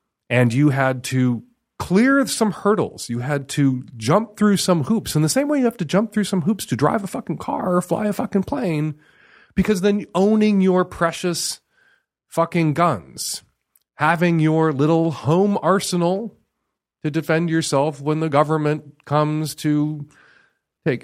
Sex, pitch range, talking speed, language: male, 145-195 Hz, 160 wpm, English